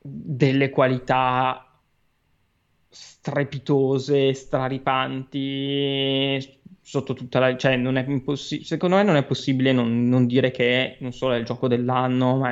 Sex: male